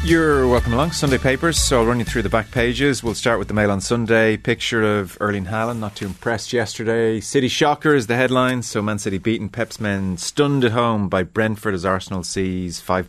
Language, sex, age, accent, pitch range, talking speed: English, male, 30-49, Irish, 85-105 Hz, 220 wpm